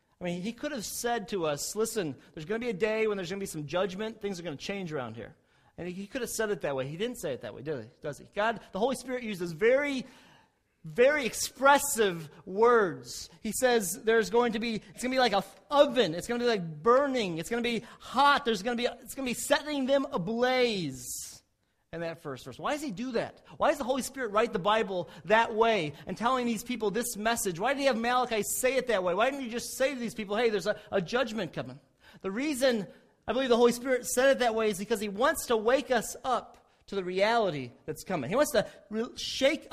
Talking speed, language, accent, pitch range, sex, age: 255 wpm, English, American, 190-245 Hz, male, 30-49